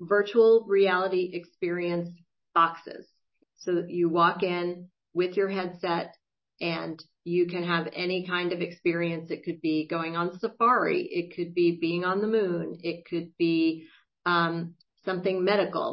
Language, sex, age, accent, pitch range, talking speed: English, female, 40-59, American, 165-190 Hz, 145 wpm